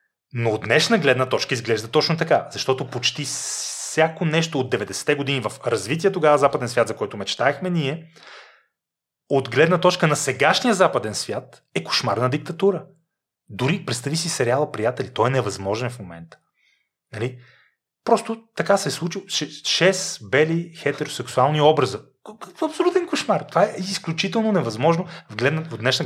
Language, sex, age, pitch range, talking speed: Bulgarian, male, 30-49, 120-165 Hz, 155 wpm